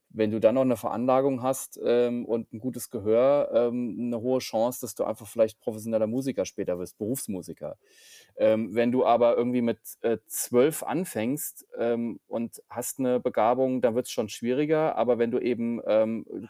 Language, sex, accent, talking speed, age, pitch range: German, male, German, 180 wpm, 30-49, 115-135 Hz